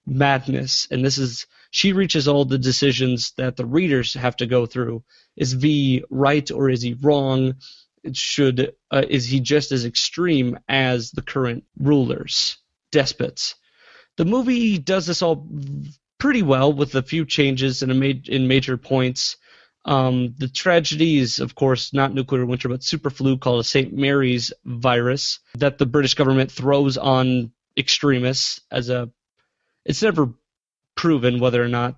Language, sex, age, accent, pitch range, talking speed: English, male, 30-49, American, 125-150 Hz, 155 wpm